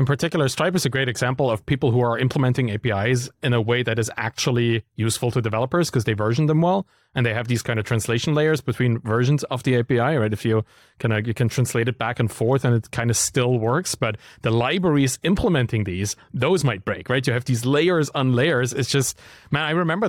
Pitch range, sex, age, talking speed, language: 120-155 Hz, male, 30-49, 235 wpm, English